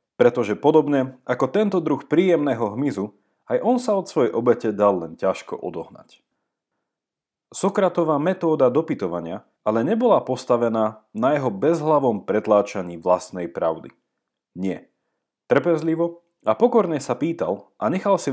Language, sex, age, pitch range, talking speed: Slovak, male, 30-49, 105-165 Hz, 125 wpm